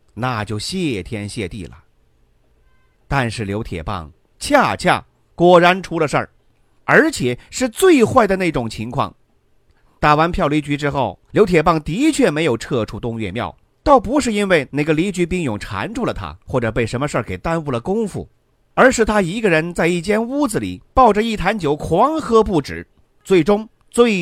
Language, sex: Chinese, male